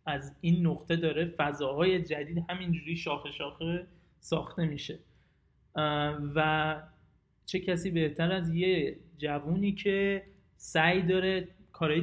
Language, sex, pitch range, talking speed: Persian, male, 150-170 Hz, 110 wpm